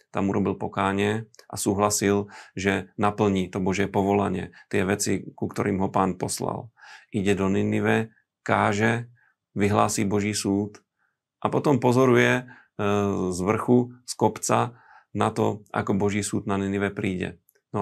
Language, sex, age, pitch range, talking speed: Slovak, male, 40-59, 100-110 Hz, 135 wpm